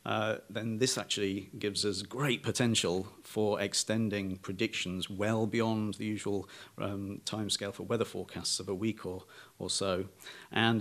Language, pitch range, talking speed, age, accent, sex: English, 100-115 Hz, 150 wpm, 40-59, British, male